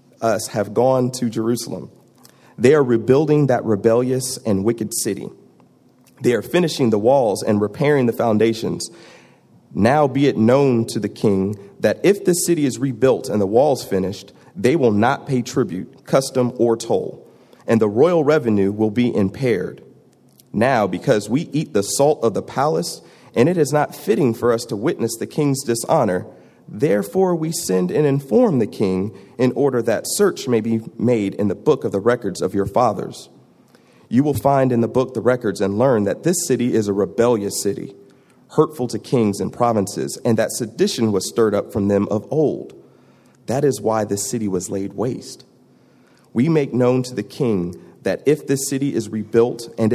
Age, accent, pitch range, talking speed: 30-49, American, 105-135 Hz, 180 wpm